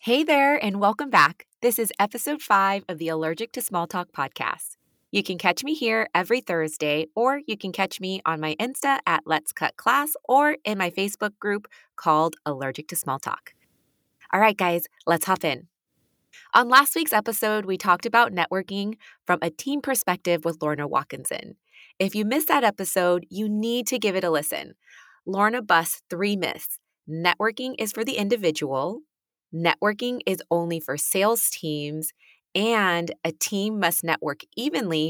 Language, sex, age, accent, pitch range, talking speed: English, female, 20-39, American, 160-225 Hz, 170 wpm